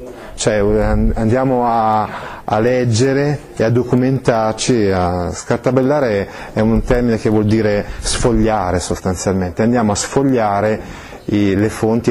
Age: 30-49